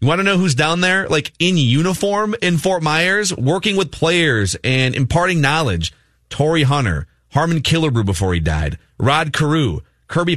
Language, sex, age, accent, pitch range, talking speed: English, male, 30-49, American, 115-160 Hz, 170 wpm